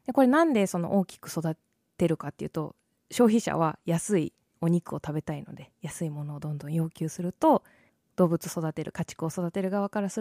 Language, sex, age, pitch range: Japanese, female, 20-39, 165-225 Hz